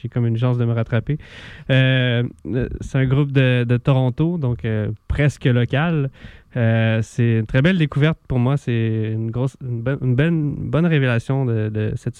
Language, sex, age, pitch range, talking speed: French, male, 20-39, 115-135 Hz, 185 wpm